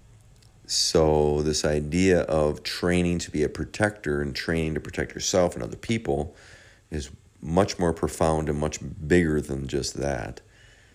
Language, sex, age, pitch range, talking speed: English, male, 40-59, 75-100 Hz, 150 wpm